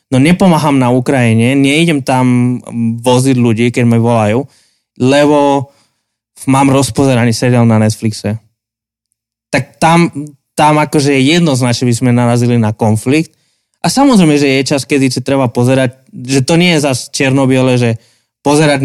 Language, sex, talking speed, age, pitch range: Slovak, male, 140 wpm, 20-39, 120-150 Hz